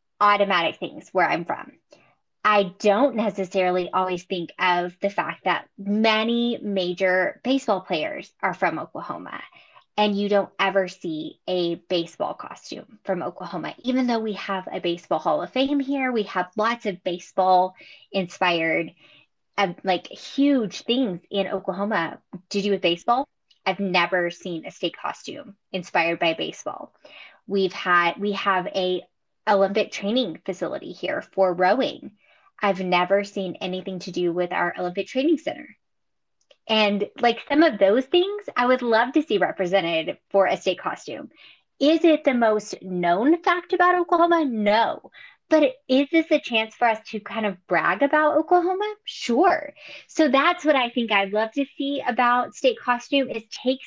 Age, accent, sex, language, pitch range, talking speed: 20-39, American, female, English, 190-270 Hz, 155 wpm